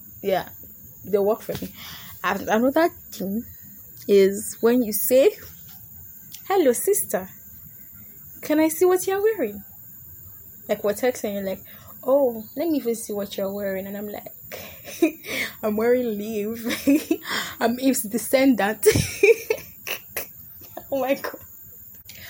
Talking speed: 130 wpm